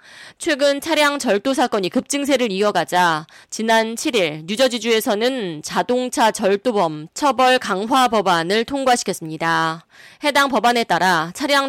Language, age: Korean, 20-39